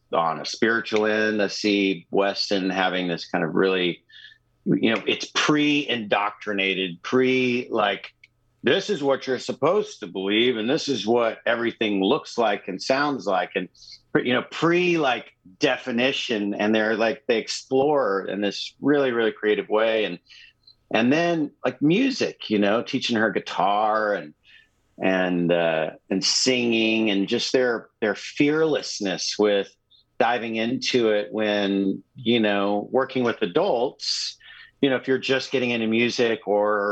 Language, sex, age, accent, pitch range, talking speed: English, male, 50-69, American, 100-125 Hz, 150 wpm